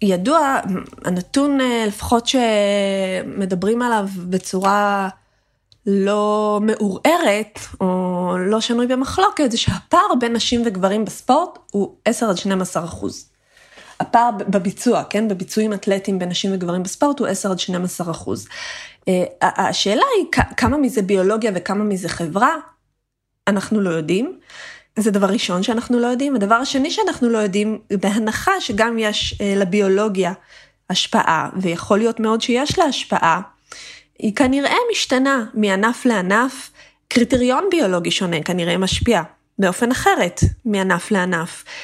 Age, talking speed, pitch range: 20-39, 110 wpm, 190-235 Hz